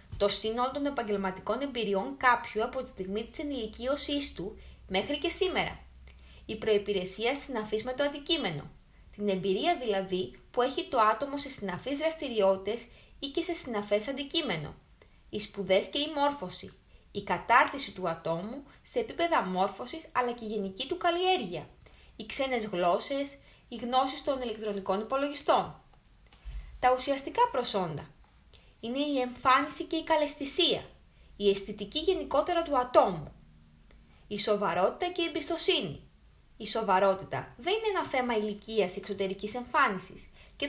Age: 20-39